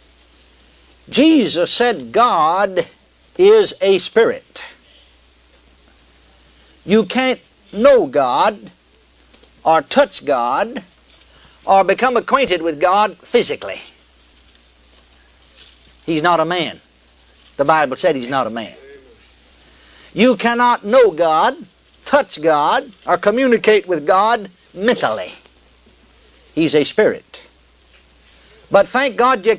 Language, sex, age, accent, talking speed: English, male, 60-79, American, 95 wpm